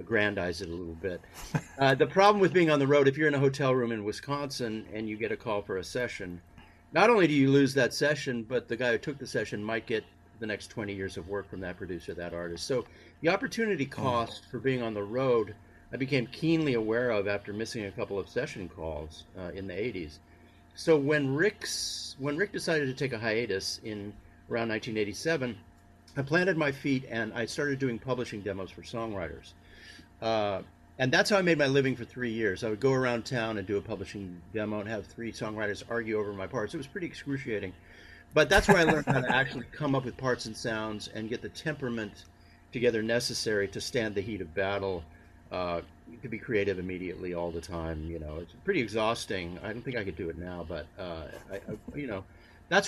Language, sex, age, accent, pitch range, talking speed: English, male, 50-69, American, 90-130 Hz, 220 wpm